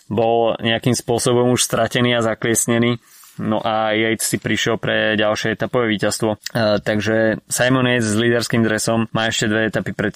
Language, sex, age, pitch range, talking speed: Slovak, male, 20-39, 105-125 Hz, 160 wpm